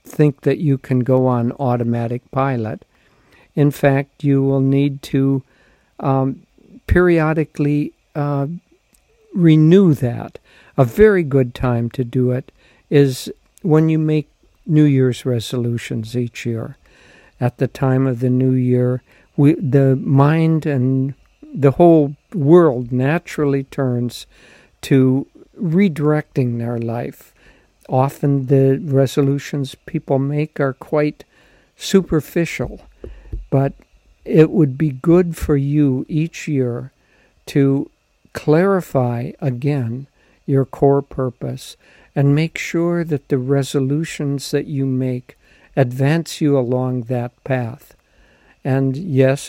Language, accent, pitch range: English, American, 130-150 Hz